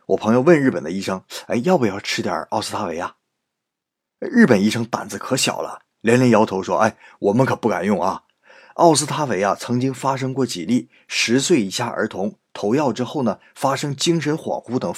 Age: 20-39